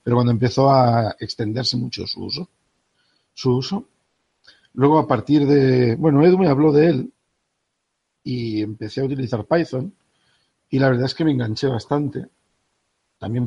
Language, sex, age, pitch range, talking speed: Spanish, male, 50-69, 110-130 Hz, 145 wpm